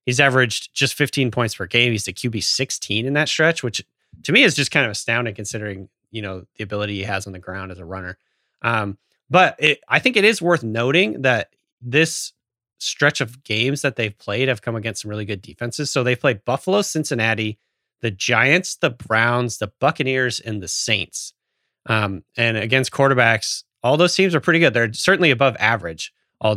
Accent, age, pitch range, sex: American, 30-49, 105-135 Hz, male